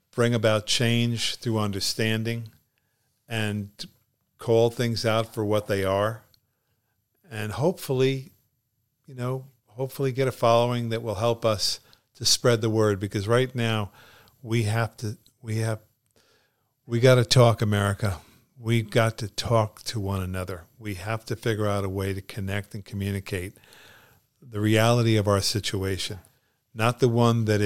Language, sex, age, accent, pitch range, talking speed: English, male, 50-69, American, 105-120 Hz, 150 wpm